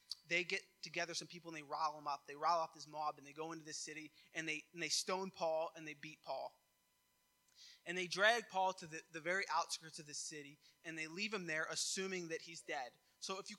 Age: 20-39